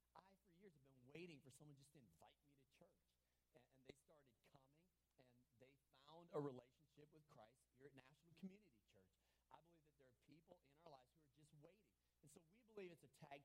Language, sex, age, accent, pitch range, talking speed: English, male, 40-59, American, 120-175 Hz, 225 wpm